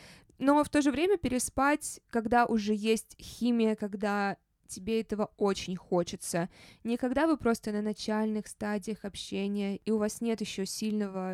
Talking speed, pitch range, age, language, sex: 150 wpm, 205-255 Hz, 20-39, Russian, female